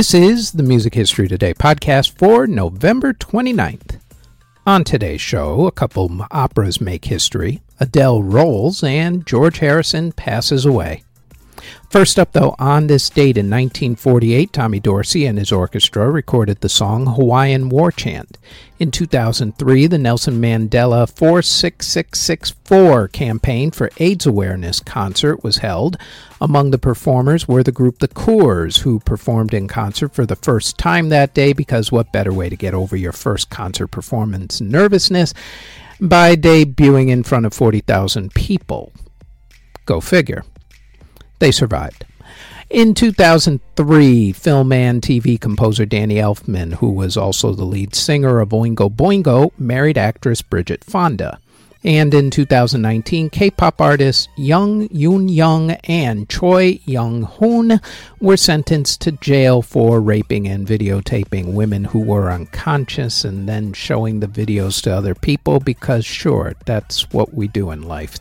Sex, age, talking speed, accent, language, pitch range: male, 50-69, 140 wpm, American, English, 105-155 Hz